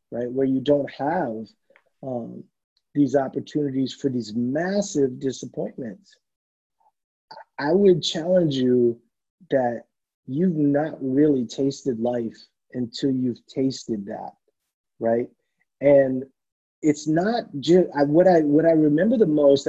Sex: male